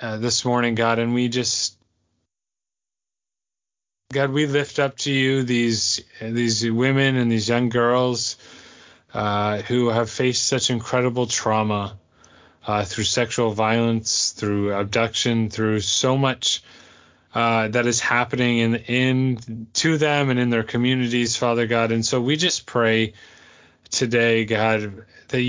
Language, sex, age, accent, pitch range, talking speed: English, male, 30-49, American, 115-130 Hz, 135 wpm